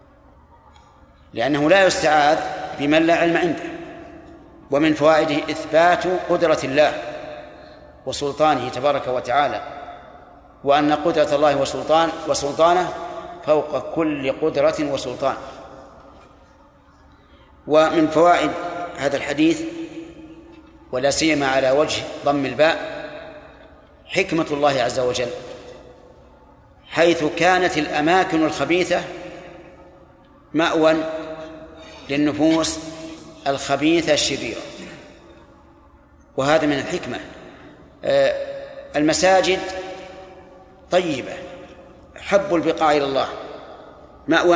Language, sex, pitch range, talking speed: Arabic, male, 140-175 Hz, 75 wpm